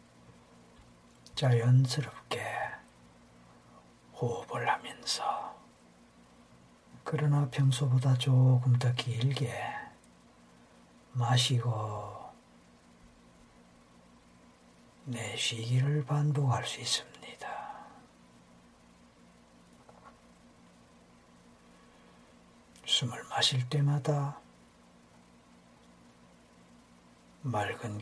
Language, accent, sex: Korean, native, male